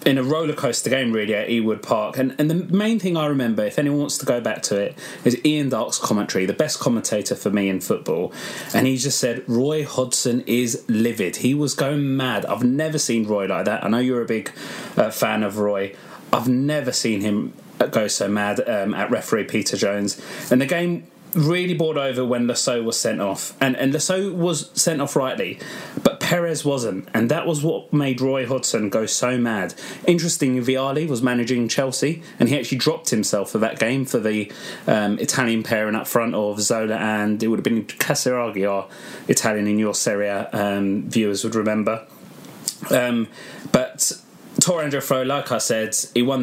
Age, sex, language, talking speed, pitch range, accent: 30-49, male, English, 200 wpm, 110-140 Hz, British